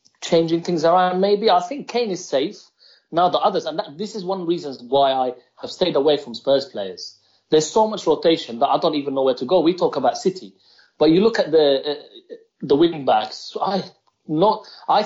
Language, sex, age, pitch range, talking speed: English, male, 30-49, 140-190 Hz, 215 wpm